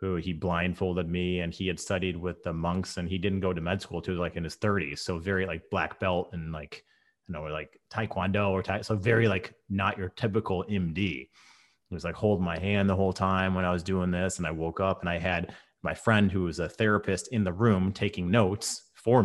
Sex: male